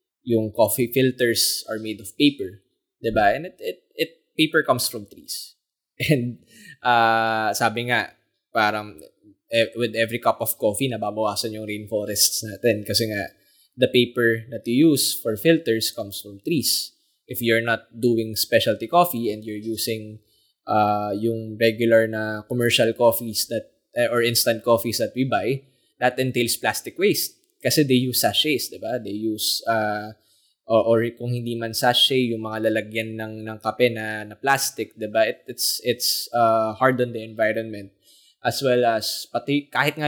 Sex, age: male, 20-39